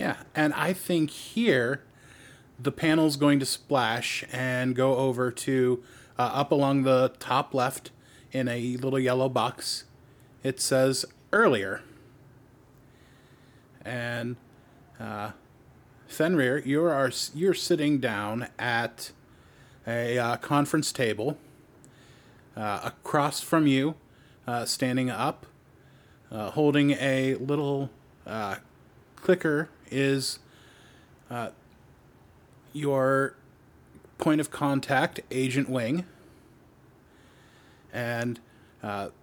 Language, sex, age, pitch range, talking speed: English, male, 30-49, 125-145 Hz, 100 wpm